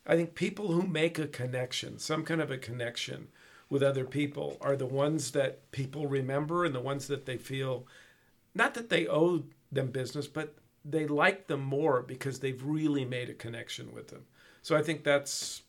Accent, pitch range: American, 130-150 Hz